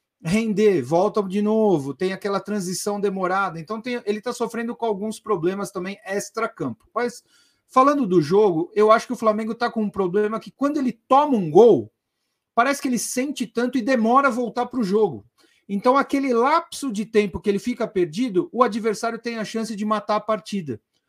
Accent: Brazilian